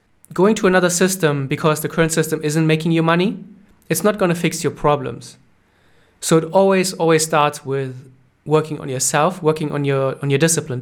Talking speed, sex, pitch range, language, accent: 190 wpm, male, 145-175 Hz, English, German